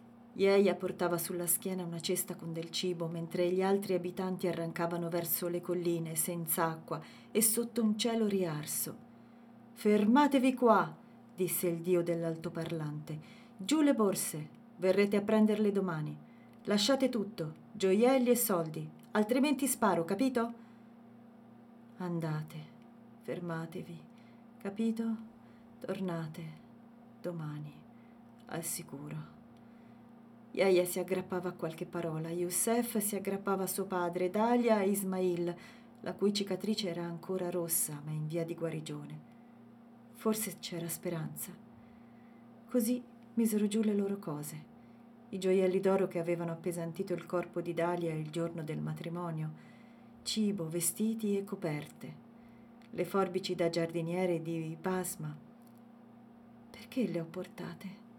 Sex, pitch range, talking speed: female, 170-235 Hz, 120 wpm